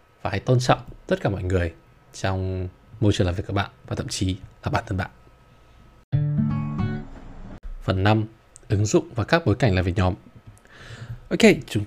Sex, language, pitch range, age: male, Vietnamese, 95-130 Hz, 20-39